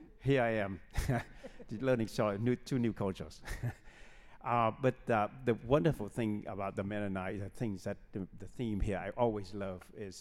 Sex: male